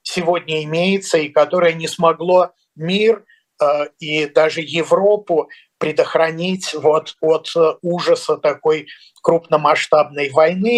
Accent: native